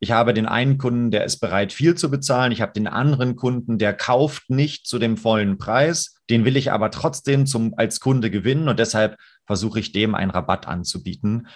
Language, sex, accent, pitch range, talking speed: German, male, German, 105-130 Hz, 200 wpm